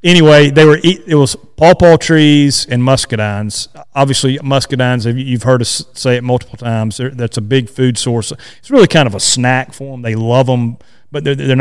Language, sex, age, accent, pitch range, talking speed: English, male, 40-59, American, 120-145 Hz, 195 wpm